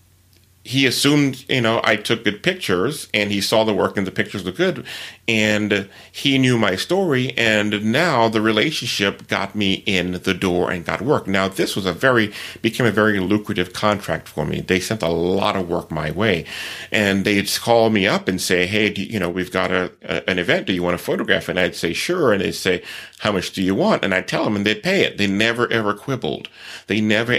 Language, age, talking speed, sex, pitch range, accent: English, 40-59, 230 wpm, male, 95-115 Hz, American